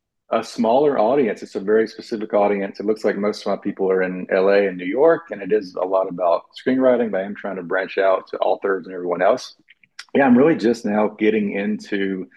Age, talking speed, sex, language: 40-59, 230 wpm, male, English